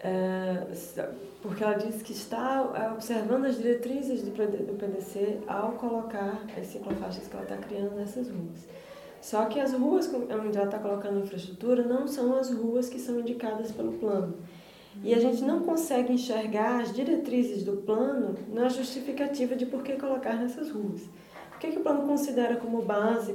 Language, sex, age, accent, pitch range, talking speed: Portuguese, female, 20-39, Brazilian, 210-255 Hz, 165 wpm